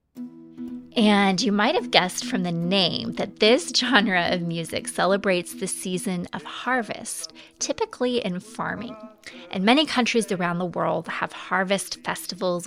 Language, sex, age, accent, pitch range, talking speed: English, female, 20-39, American, 180-230 Hz, 140 wpm